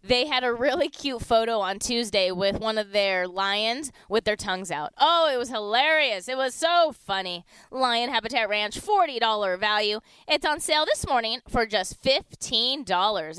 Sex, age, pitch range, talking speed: female, 20-39, 210-325 Hz, 170 wpm